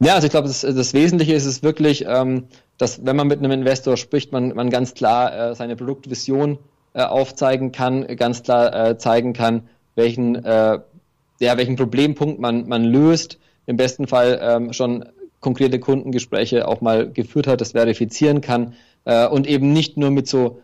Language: German